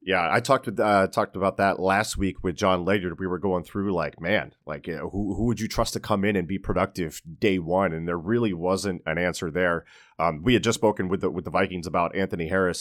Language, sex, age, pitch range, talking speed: English, male, 30-49, 95-110 Hz, 255 wpm